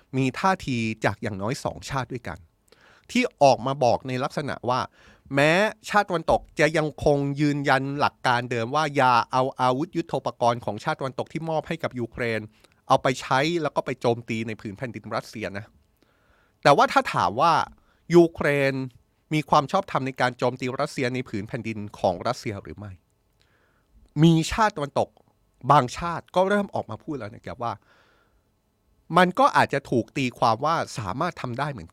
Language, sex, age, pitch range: Thai, male, 30-49, 110-150 Hz